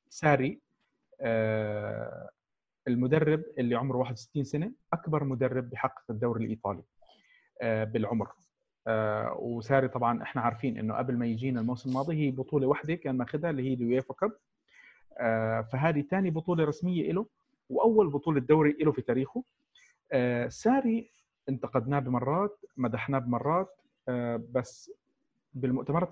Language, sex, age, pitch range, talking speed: Arabic, male, 40-59, 120-155 Hz, 115 wpm